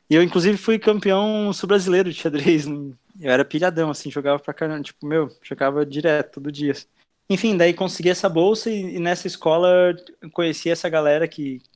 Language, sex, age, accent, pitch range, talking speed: Portuguese, male, 20-39, Brazilian, 145-175 Hz, 175 wpm